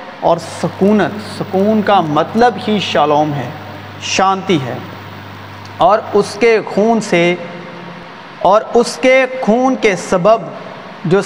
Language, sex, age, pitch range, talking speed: Urdu, male, 40-59, 175-235 Hz, 115 wpm